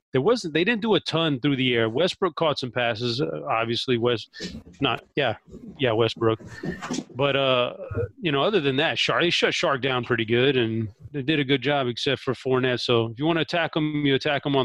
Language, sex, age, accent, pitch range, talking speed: English, male, 30-49, American, 125-160 Hz, 240 wpm